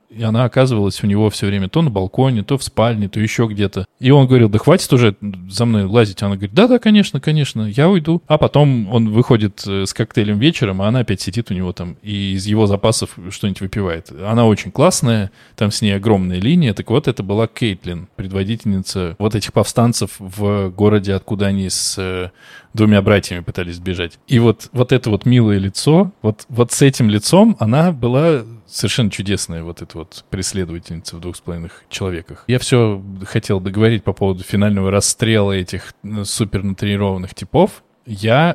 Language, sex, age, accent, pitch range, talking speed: Russian, male, 20-39, native, 100-120 Hz, 180 wpm